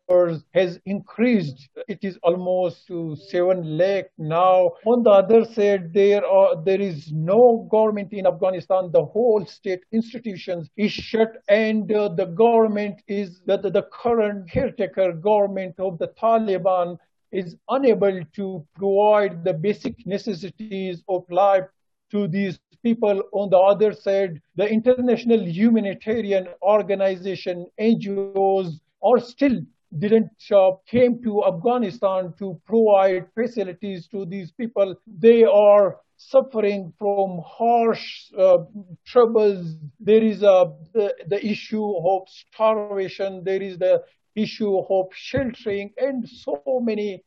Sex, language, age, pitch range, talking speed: male, English, 50-69, 185-220 Hz, 125 wpm